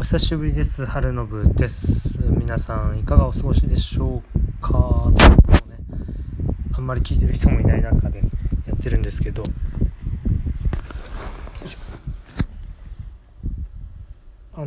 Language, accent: Japanese, native